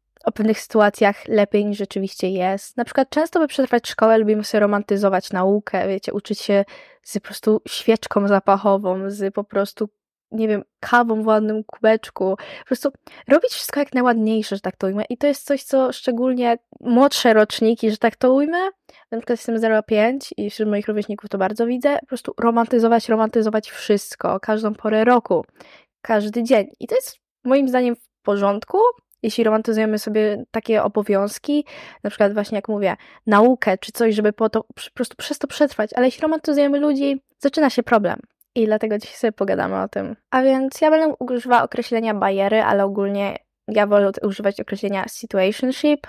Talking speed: 170 wpm